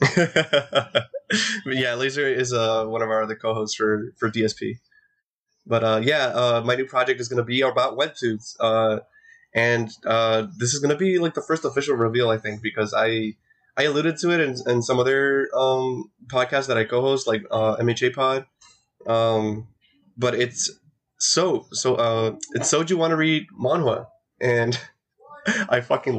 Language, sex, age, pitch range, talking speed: English, male, 20-39, 115-140 Hz, 175 wpm